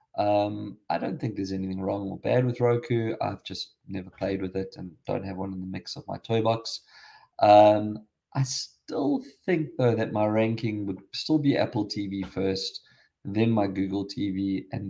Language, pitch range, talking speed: English, 100-125 Hz, 190 wpm